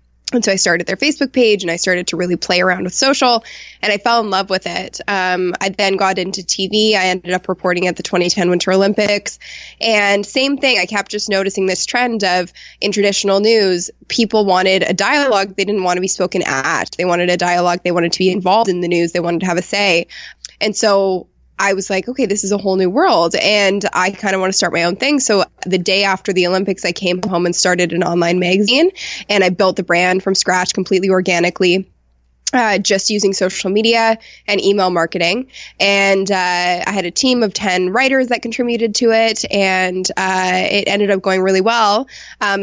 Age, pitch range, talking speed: 20-39, 180-205 Hz, 220 wpm